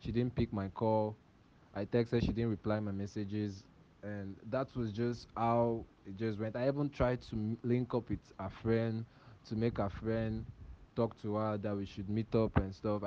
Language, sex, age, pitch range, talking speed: English, male, 20-39, 100-120 Hz, 205 wpm